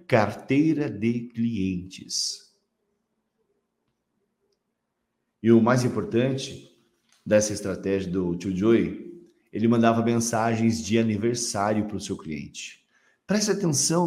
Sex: male